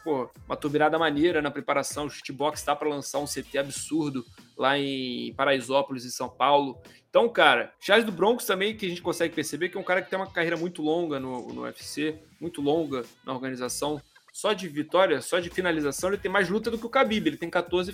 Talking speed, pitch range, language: 215 wpm, 150-195 Hz, Portuguese